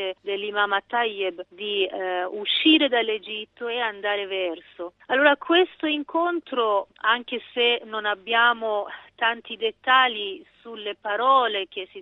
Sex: female